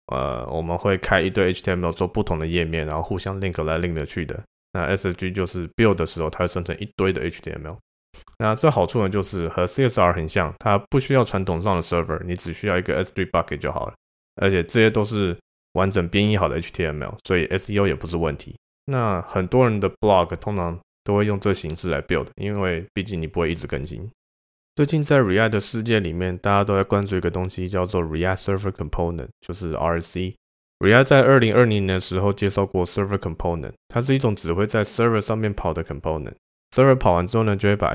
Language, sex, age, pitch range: Chinese, male, 20-39, 85-105 Hz